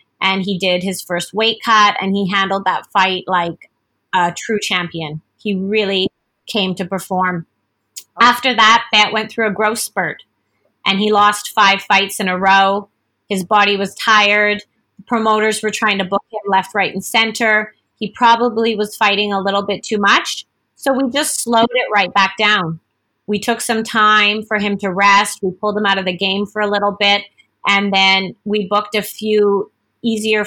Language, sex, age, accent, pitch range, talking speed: English, female, 30-49, American, 195-220 Hz, 185 wpm